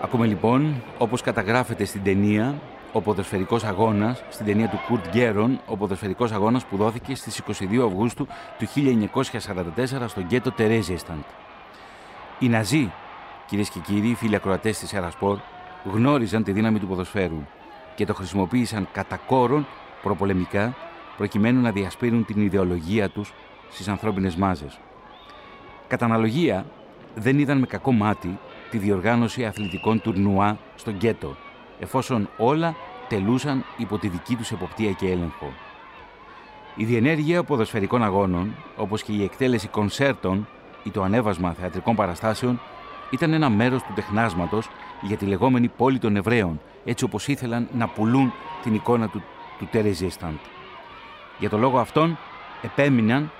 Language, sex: Greek, male